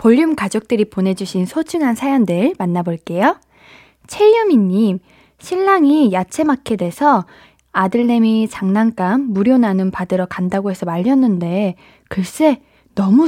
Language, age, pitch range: Korean, 20-39, 190-255 Hz